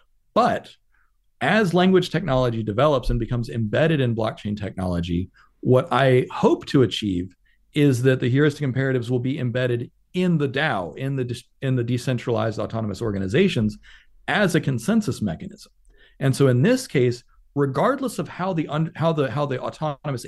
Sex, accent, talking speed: male, American, 160 wpm